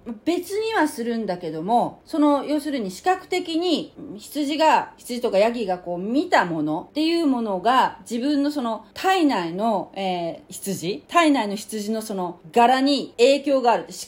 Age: 40-59